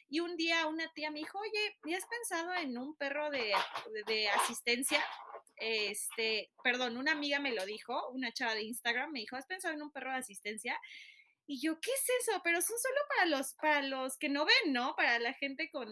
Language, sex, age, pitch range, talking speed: Spanish, female, 20-39, 250-320 Hz, 220 wpm